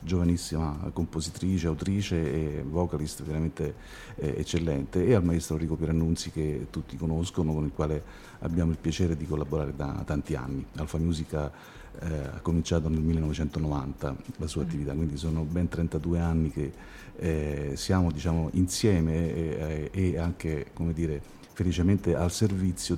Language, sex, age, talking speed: Italian, male, 50-69, 135 wpm